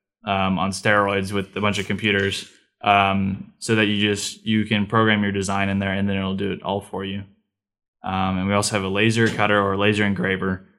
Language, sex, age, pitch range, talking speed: English, male, 10-29, 100-105 Hz, 215 wpm